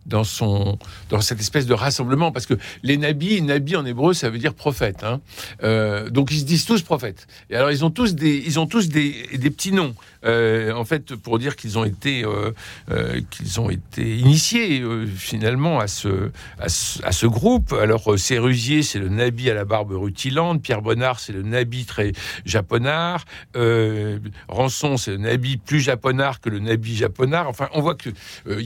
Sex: male